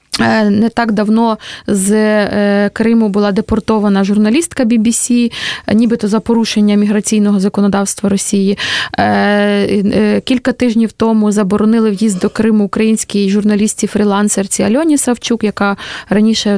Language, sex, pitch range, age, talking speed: Russian, female, 205-235 Hz, 20-39, 100 wpm